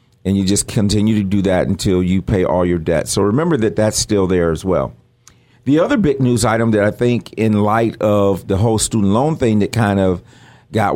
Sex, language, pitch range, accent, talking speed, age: male, English, 95-115 Hz, American, 225 wpm, 50-69